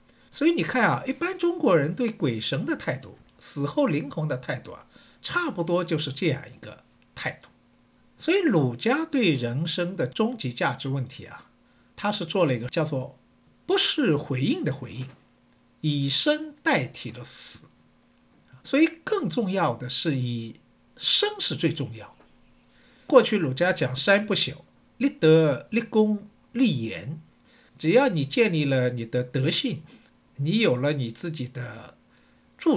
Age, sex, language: 50-69, male, Chinese